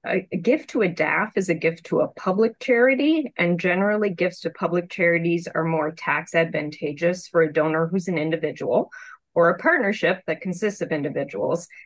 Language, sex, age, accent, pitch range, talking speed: English, female, 30-49, American, 160-210 Hz, 175 wpm